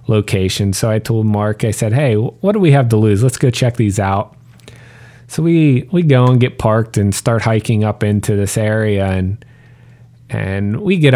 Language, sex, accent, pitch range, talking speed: English, male, American, 105-125 Hz, 200 wpm